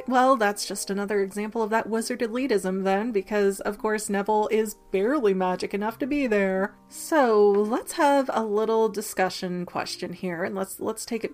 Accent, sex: American, female